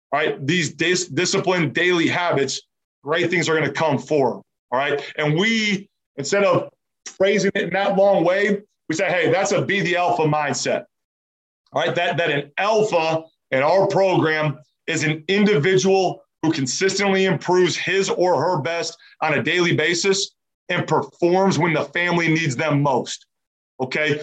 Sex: male